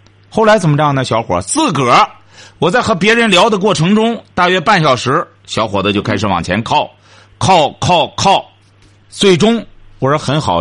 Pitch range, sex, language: 100-165 Hz, male, Chinese